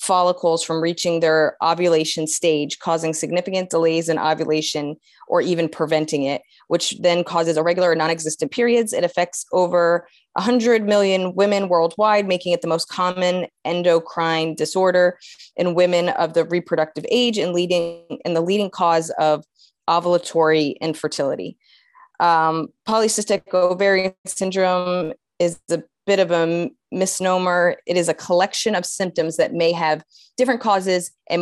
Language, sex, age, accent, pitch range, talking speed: English, female, 20-39, American, 160-190 Hz, 140 wpm